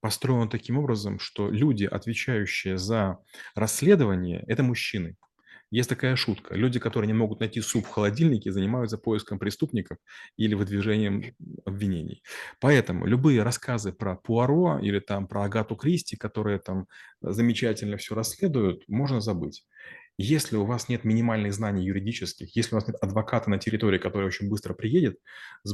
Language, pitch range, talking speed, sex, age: Russian, 105-130 Hz, 145 wpm, male, 30-49